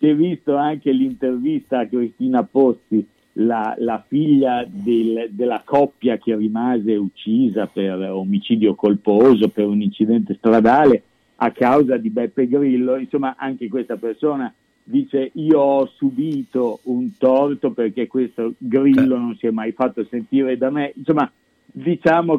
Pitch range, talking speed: 120-150 Hz, 140 wpm